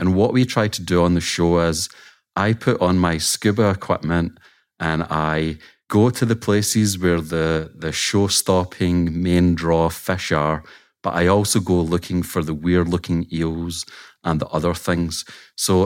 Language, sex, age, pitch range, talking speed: English, male, 30-49, 80-100 Hz, 165 wpm